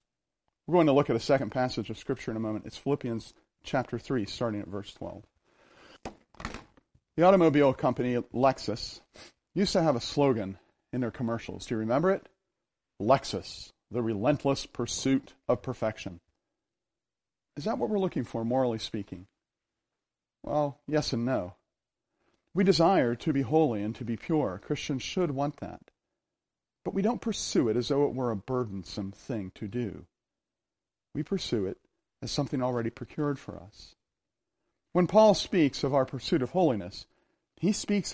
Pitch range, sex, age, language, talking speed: 115-155 Hz, male, 40-59, English, 160 wpm